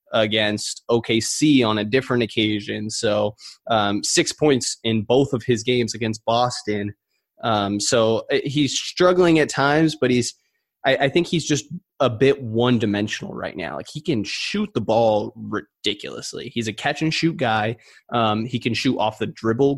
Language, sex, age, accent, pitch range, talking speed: English, male, 20-39, American, 110-135 Hz, 165 wpm